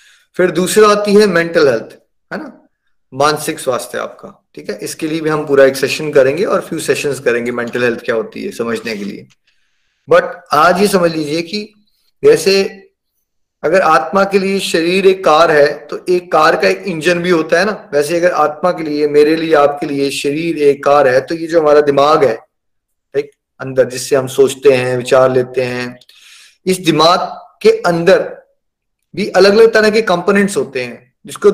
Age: 30-49